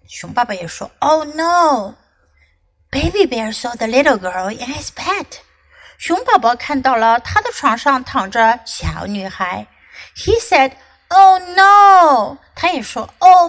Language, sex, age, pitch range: Chinese, female, 60-79, 225-330 Hz